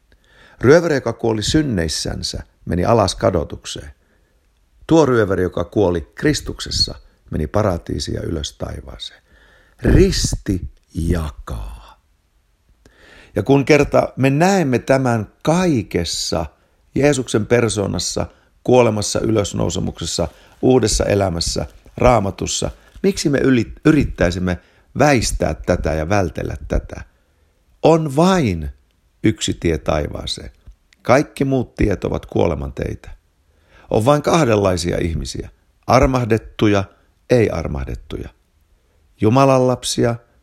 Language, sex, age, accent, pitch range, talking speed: Finnish, male, 50-69, native, 80-125 Hz, 90 wpm